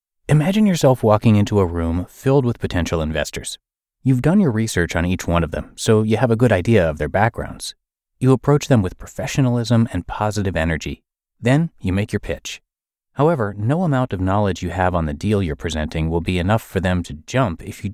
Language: English